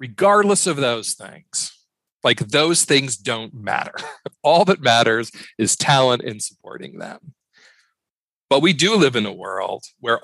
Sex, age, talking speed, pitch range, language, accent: male, 40-59, 145 wpm, 110-145 Hz, English, American